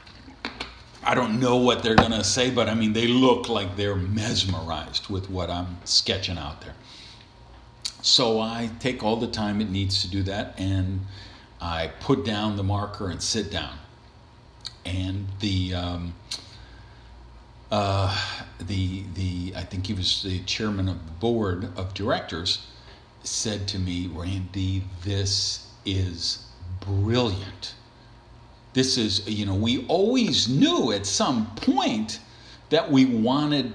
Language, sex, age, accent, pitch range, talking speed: English, male, 50-69, American, 95-125 Hz, 140 wpm